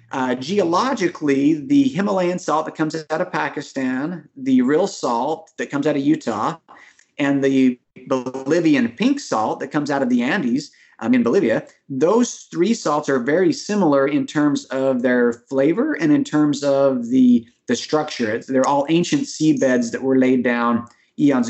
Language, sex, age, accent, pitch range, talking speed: English, male, 30-49, American, 130-185 Hz, 165 wpm